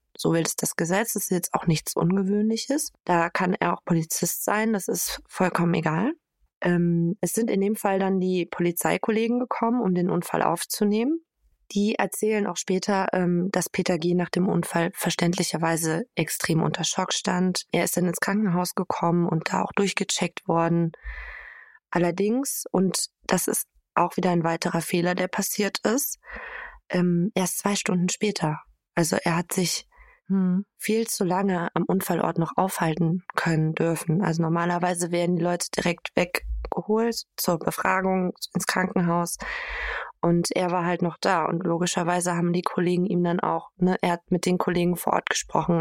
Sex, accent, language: female, German, German